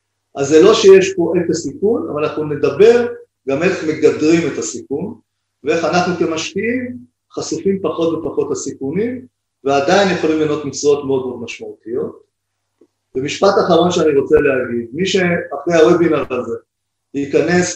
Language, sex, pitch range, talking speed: Hebrew, male, 135-195 Hz, 130 wpm